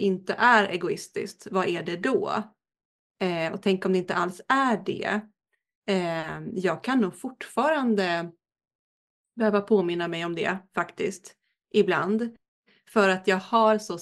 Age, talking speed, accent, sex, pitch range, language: 30-49, 135 wpm, native, female, 185-220 Hz, Swedish